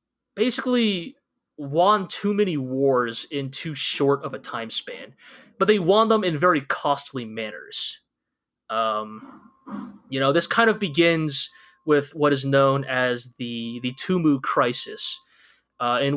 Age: 20-39